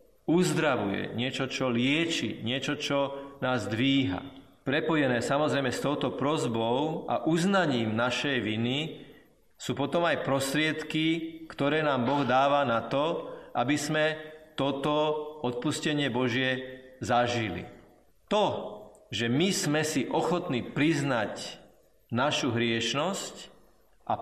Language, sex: Slovak, male